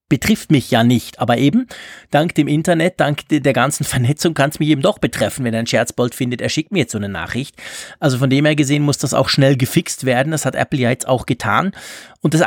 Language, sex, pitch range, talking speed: German, male, 130-165 Hz, 245 wpm